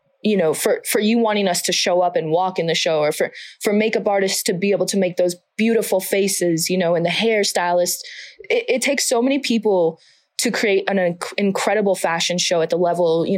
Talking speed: 225 wpm